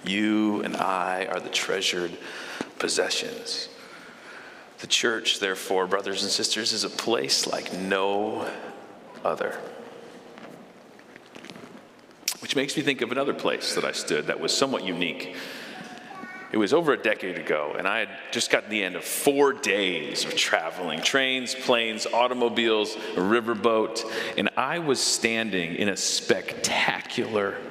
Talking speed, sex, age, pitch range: 135 wpm, male, 40-59, 115-180 Hz